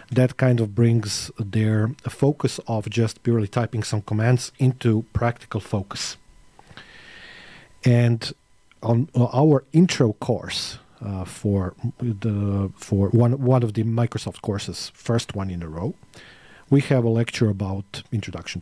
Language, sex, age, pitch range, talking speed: English, male, 40-59, 105-135 Hz, 130 wpm